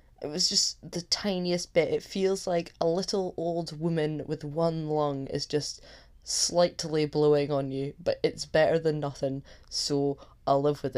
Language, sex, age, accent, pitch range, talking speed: English, female, 10-29, British, 150-185 Hz, 170 wpm